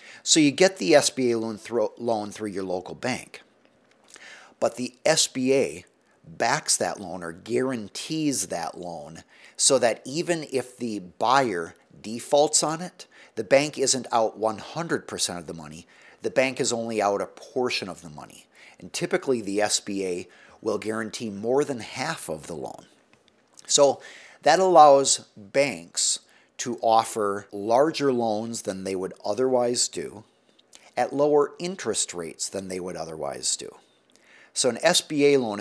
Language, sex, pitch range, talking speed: English, male, 105-145 Hz, 145 wpm